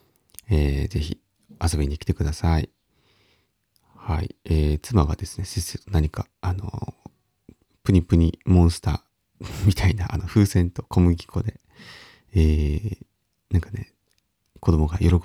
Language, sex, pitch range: Japanese, male, 80-105 Hz